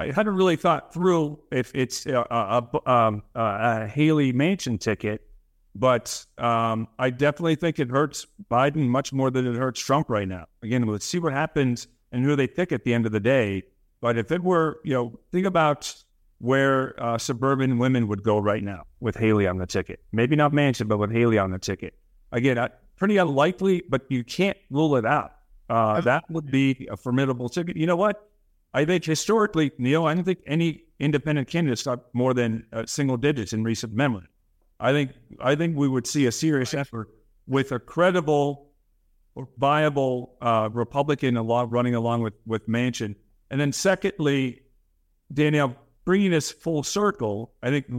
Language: English